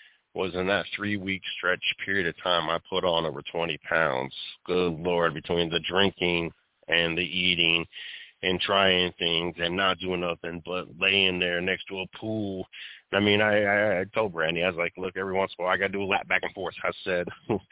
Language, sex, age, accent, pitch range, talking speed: English, male, 30-49, American, 90-105 Hz, 215 wpm